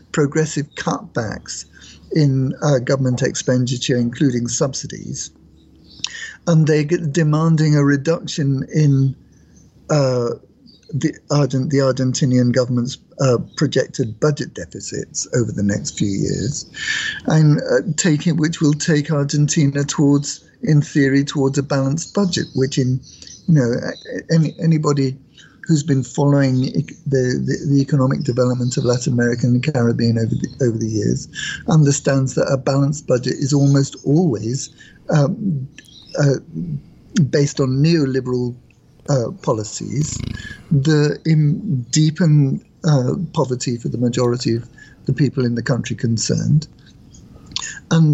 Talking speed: 120 wpm